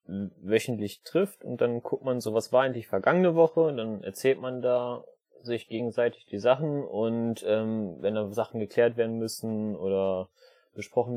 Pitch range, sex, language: 105-135 Hz, male, German